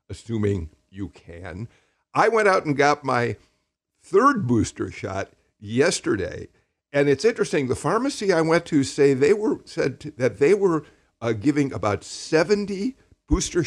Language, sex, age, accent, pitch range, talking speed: English, male, 50-69, American, 100-135 Hz, 150 wpm